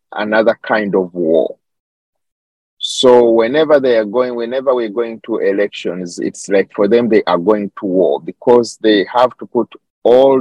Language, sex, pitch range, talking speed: English, male, 95-120 Hz, 165 wpm